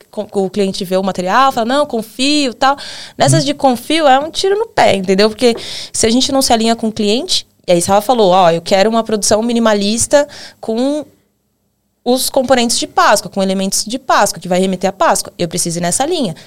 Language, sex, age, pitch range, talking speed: Portuguese, female, 20-39, 180-235 Hz, 210 wpm